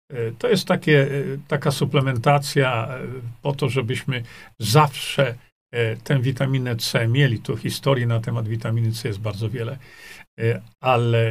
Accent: native